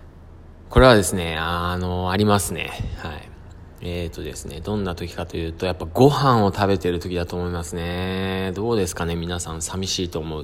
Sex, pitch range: male, 85-105 Hz